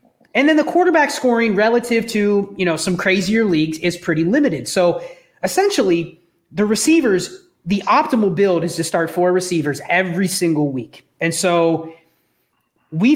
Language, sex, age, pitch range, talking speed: English, male, 30-49, 170-220 Hz, 150 wpm